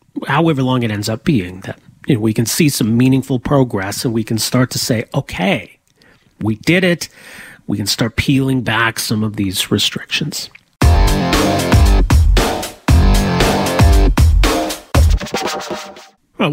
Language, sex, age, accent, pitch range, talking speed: English, male, 40-59, American, 120-155 Hz, 125 wpm